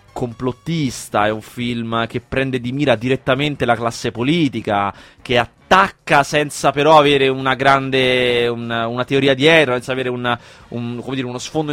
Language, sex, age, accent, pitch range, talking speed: Italian, male, 20-39, native, 120-145 Hz, 160 wpm